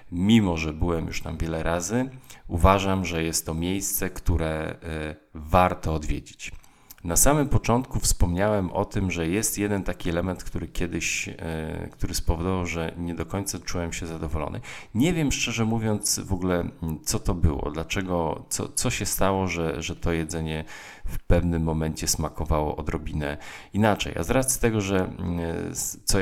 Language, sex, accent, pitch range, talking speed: Polish, male, native, 80-95 Hz, 155 wpm